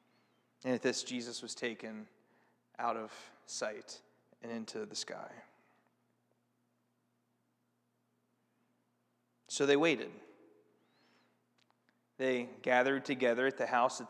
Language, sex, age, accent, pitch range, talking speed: English, male, 30-49, American, 105-140 Hz, 100 wpm